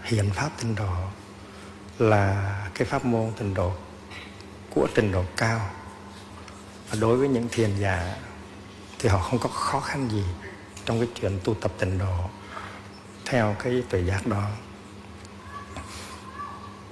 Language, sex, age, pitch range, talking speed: Vietnamese, male, 60-79, 100-110 Hz, 140 wpm